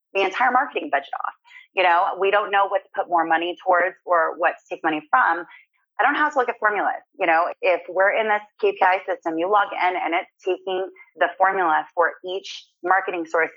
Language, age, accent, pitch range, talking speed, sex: English, 30-49, American, 165-205 Hz, 220 wpm, female